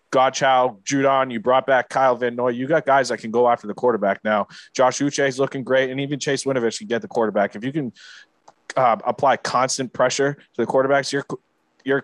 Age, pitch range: 20-39, 125-145 Hz